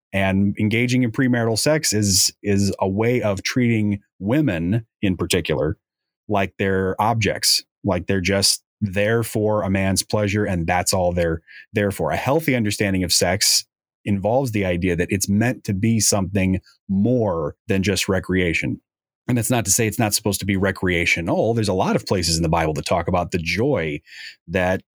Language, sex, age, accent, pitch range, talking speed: English, male, 30-49, American, 95-120 Hz, 180 wpm